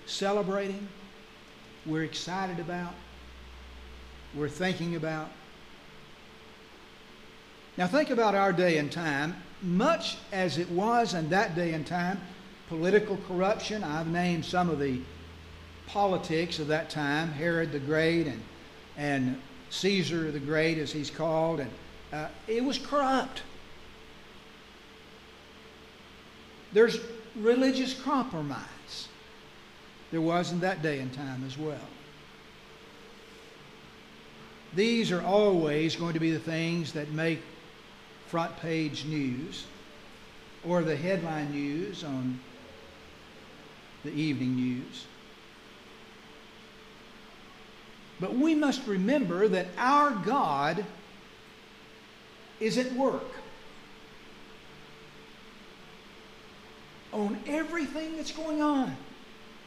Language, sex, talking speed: English, male, 100 wpm